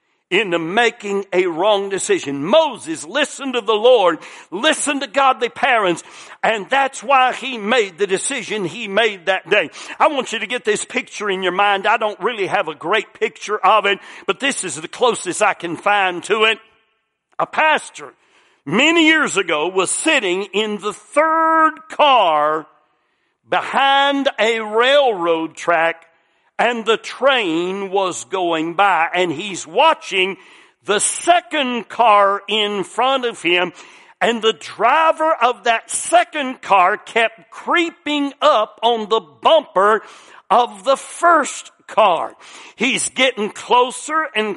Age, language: 60-79, English